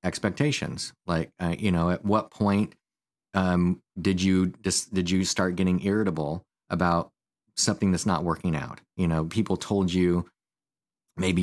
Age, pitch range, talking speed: 30-49, 80-95 Hz, 145 wpm